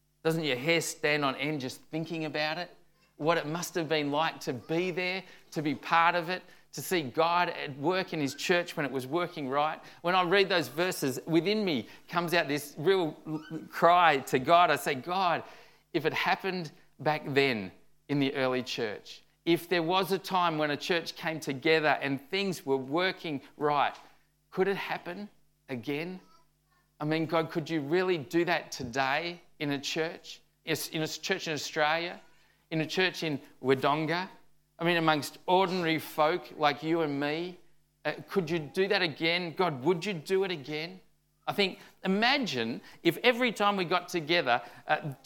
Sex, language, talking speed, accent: male, English, 180 wpm, Australian